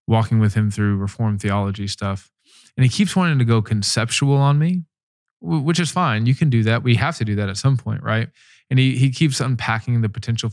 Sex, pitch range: male, 110-135 Hz